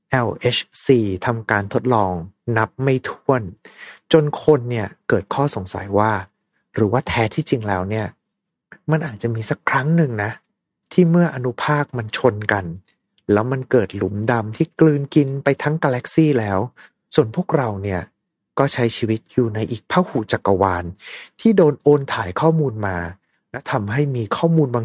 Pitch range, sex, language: 105-150 Hz, male, Thai